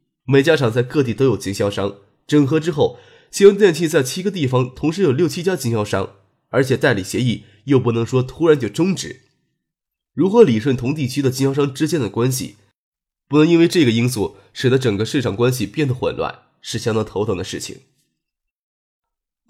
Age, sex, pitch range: 20-39, male, 115-155 Hz